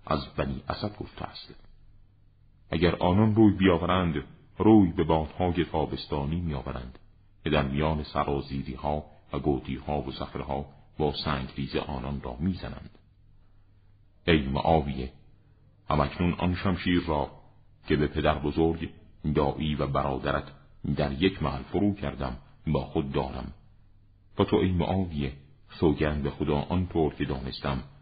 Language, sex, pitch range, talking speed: Persian, male, 70-95 Hz, 125 wpm